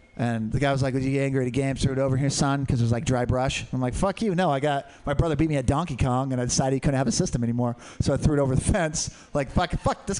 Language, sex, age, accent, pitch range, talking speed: English, male, 30-49, American, 110-165 Hz, 335 wpm